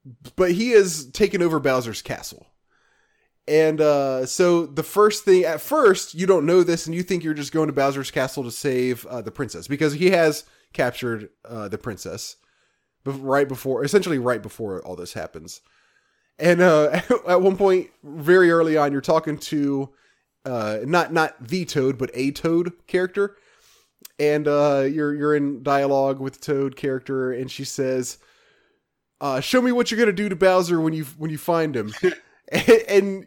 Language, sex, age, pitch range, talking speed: English, male, 20-39, 140-180 Hz, 175 wpm